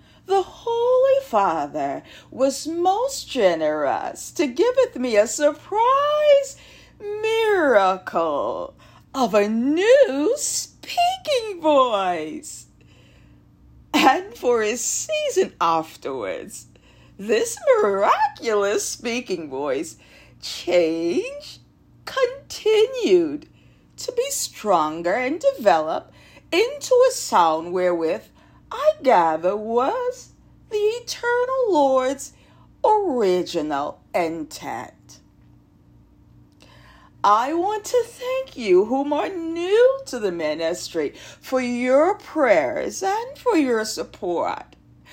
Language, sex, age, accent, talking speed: English, female, 40-59, American, 85 wpm